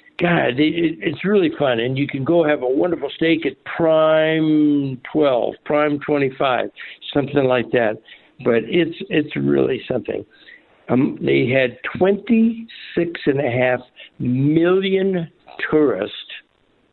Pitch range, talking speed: 135-190 Hz, 115 wpm